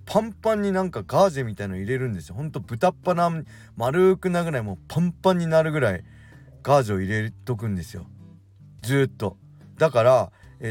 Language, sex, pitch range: Japanese, male, 100-155 Hz